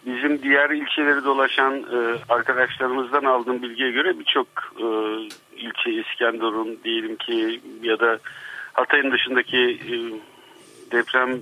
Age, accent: 50-69, native